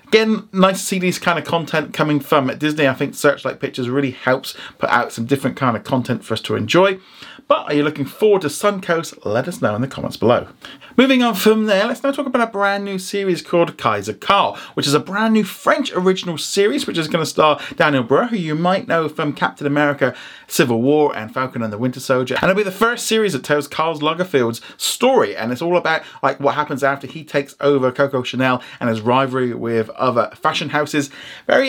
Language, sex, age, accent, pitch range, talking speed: English, male, 30-49, British, 130-185 Hz, 225 wpm